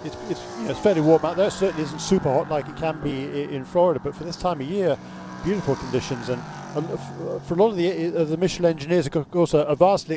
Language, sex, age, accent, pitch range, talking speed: English, male, 40-59, British, 145-170 Hz, 240 wpm